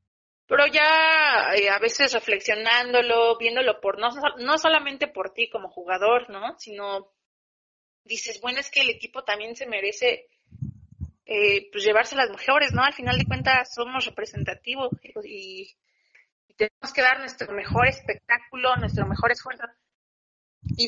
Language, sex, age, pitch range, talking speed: Spanish, female, 30-49, 210-265 Hz, 145 wpm